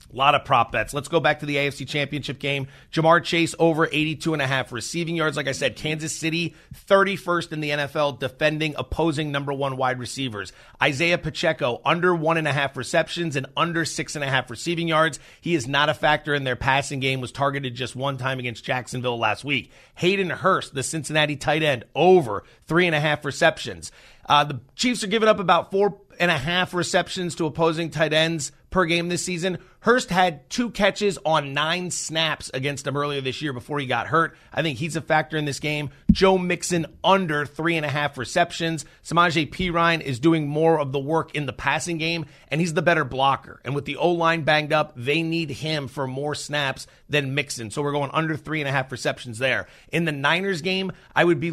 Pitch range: 140-170 Hz